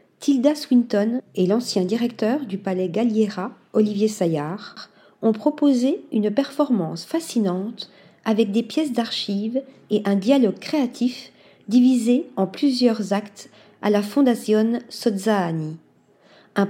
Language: French